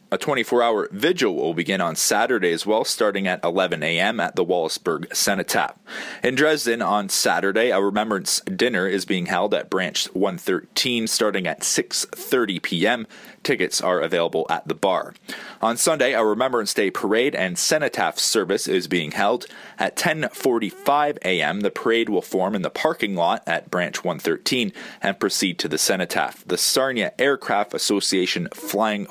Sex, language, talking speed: male, English, 155 wpm